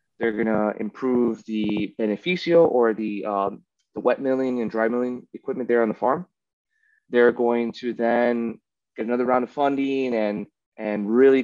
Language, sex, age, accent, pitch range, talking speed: English, male, 20-39, American, 105-135 Hz, 165 wpm